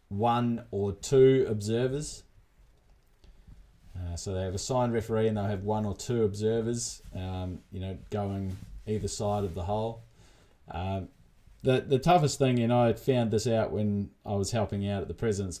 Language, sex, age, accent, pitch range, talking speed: English, male, 20-39, Australian, 90-110 Hz, 175 wpm